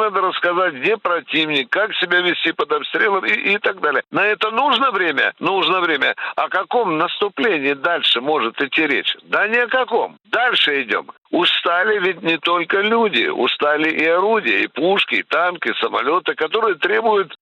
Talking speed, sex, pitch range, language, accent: 165 wpm, male, 160-230 Hz, Russian, native